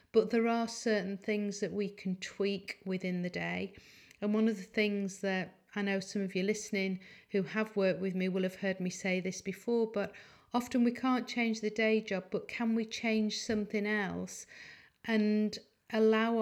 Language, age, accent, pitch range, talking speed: English, 40-59, British, 190-220 Hz, 190 wpm